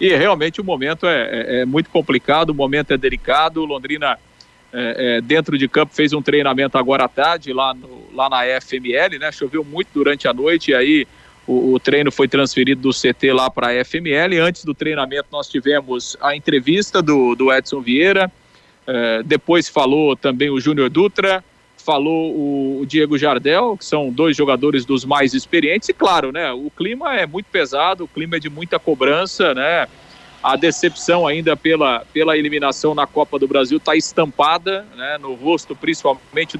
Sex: male